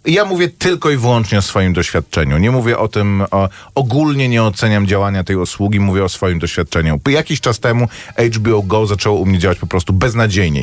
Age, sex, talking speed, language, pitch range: 30-49, male, 200 wpm, Polish, 105-135 Hz